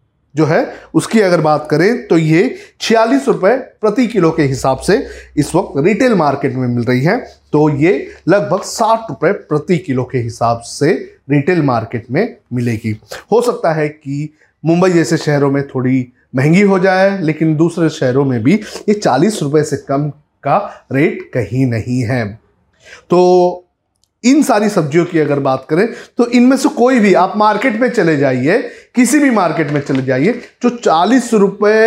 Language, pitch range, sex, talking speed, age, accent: Hindi, 140-225 Hz, male, 170 wpm, 30-49, native